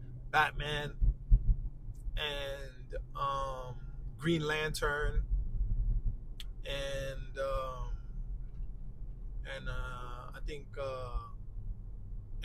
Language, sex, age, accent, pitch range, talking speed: English, male, 20-39, American, 110-150 Hz, 60 wpm